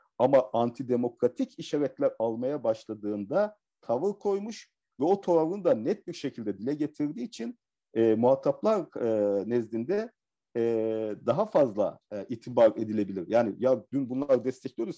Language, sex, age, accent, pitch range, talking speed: Turkish, male, 50-69, native, 110-165 Hz, 130 wpm